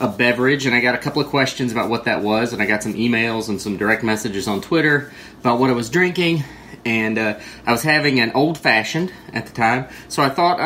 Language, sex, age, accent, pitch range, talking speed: English, male, 30-49, American, 110-130 Hz, 240 wpm